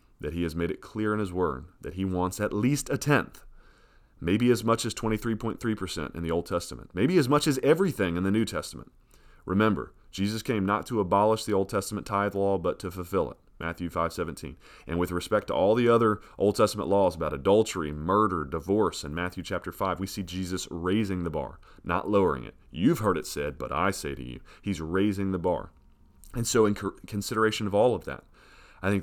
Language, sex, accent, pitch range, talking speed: English, male, American, 80-105 Hz, 210 wpm